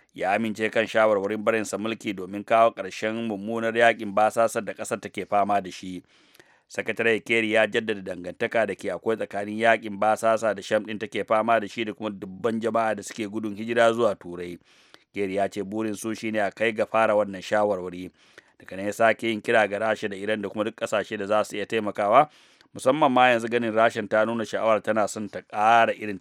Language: English